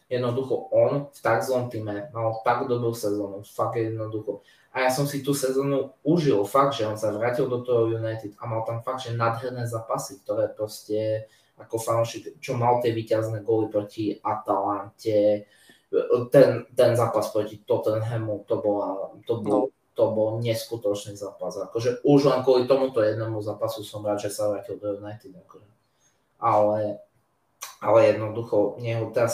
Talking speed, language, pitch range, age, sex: 160 wpm, Slovak, 110-130 Hz, 20-39, male